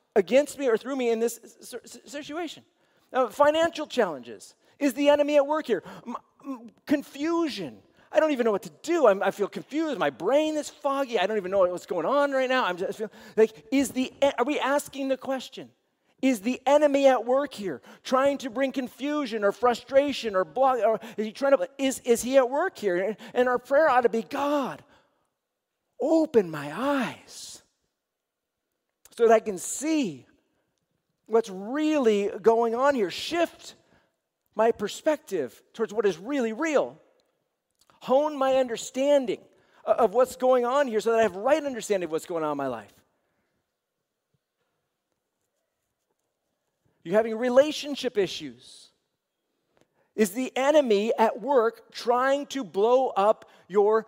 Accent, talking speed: American, 160 wpm